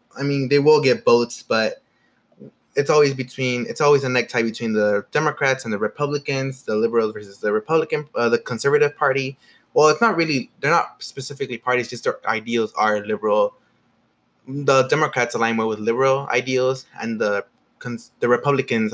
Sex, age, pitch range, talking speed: male, 20-39, 120-150 Hz, 175 wpm